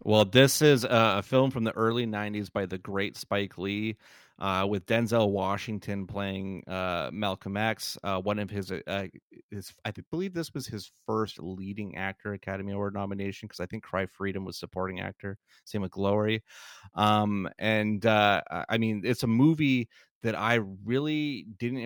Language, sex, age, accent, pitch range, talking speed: English, male, 30-49, American, 95-110 Hz, 170 wpm